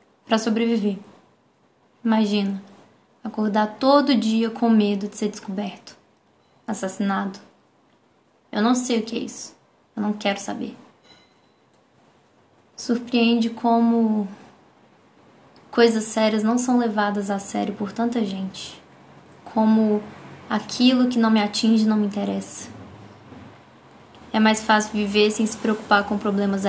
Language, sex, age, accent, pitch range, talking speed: Portuguese, female, 10-29, Brazilian, 205-235 Hz, 120 wpm